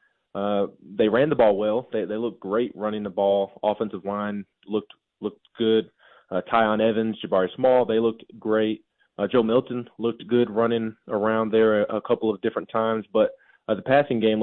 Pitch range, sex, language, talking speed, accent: 100-115 Hz, male, English, 185 wpm, American